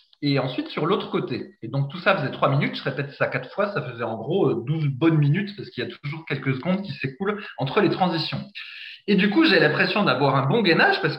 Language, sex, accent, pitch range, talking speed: French, male, French, 145-205 Hz, 245 wpm